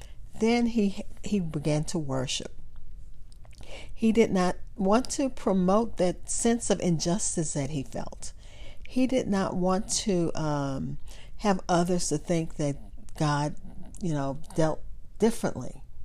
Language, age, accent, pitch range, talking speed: English, 50-69, American, 145-200 Hz, 130 wpm